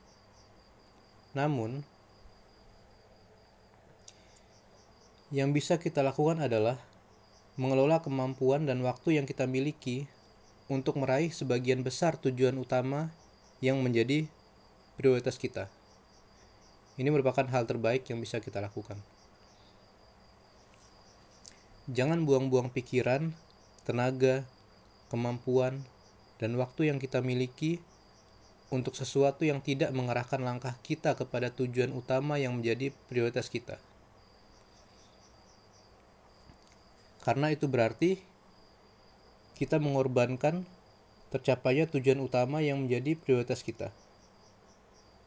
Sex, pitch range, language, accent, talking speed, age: male, 105-135 Hz, Indonesian, native, 90 wpm, 20-39